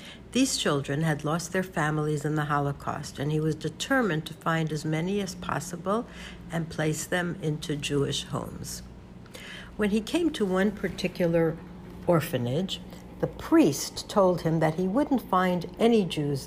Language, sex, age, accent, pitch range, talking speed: English, female, 60-79, American, 155-190 Hz, 155 wpm